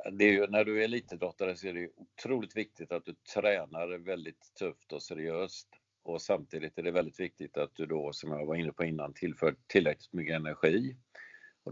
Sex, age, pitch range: male, 50-69, 85-105 Hz